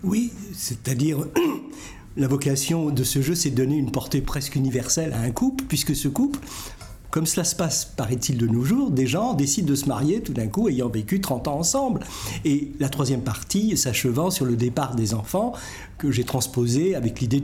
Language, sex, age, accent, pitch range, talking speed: French, male, 60-79, French, 120-165 Hz, 195 wpm